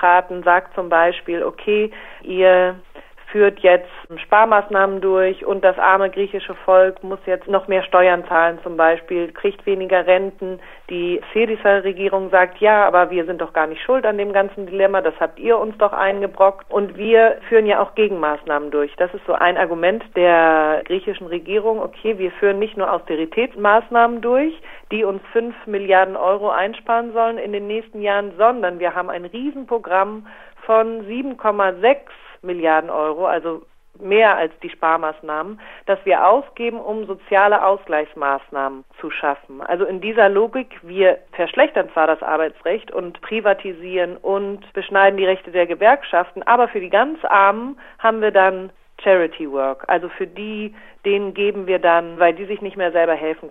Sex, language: female, German